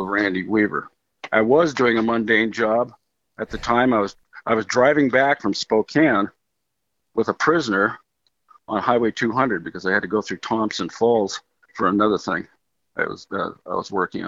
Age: 50-69